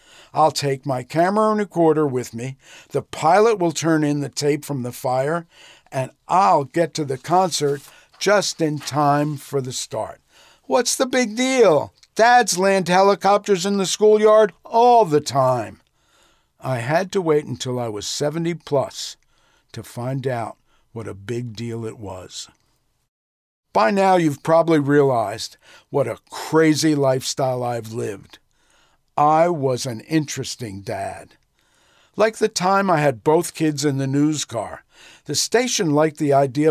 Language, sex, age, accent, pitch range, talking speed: English, male, 50-69, American, 130-170 Hz, 150 wpm